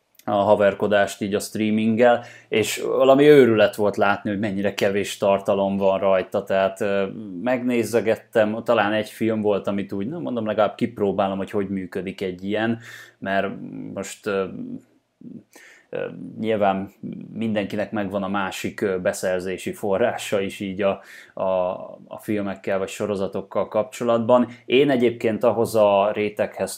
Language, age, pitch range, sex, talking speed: Hungarian, 20-39, 100-115 Hz, male, 125 wpm